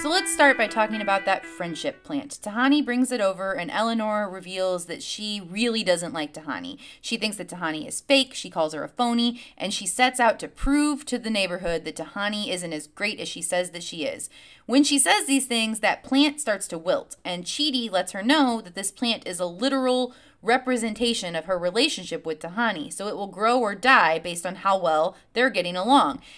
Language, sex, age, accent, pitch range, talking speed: English, female, 20-39, American, 180-255 Hz, 210 wpm